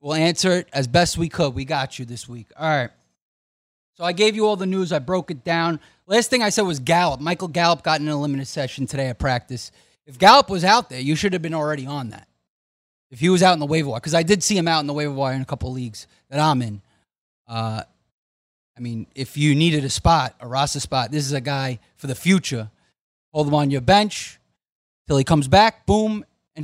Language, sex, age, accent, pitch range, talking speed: English, male, 30-49, American, 130-180 Hz, 240 wpm